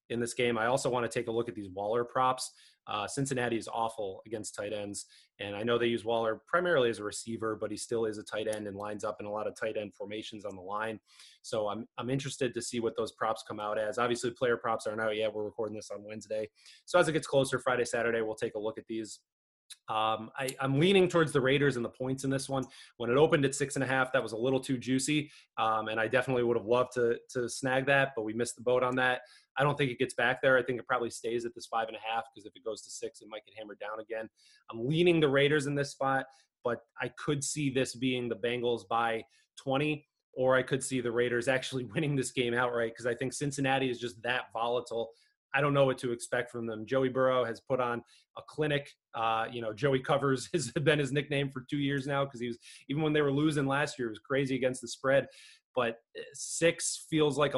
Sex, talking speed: male, 255 wpm